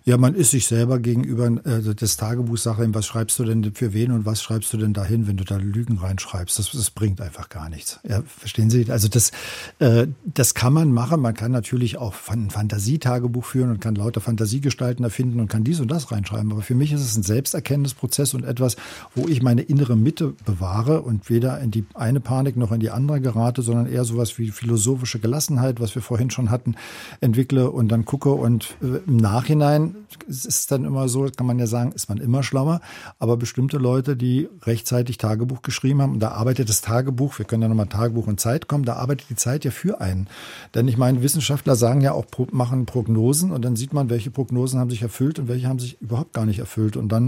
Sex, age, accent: male, 50-69, German